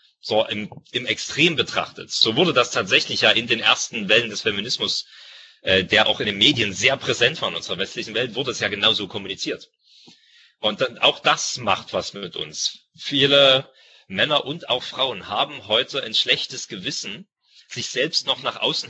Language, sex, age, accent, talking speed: German, male, 30-49, German, 180 wpm